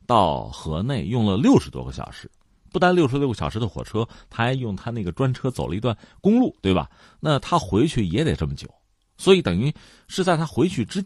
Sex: male